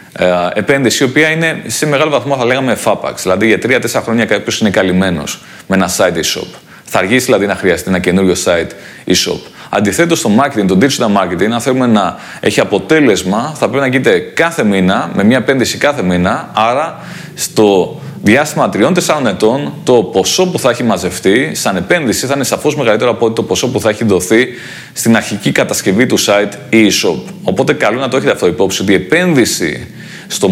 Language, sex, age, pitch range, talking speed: Greek, male, 30-49, 100-135 Hz, 185 wpm